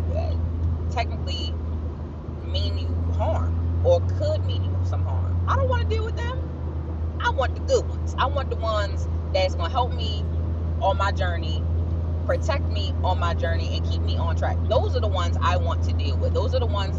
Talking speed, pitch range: 200 wpm, 80-85 Hz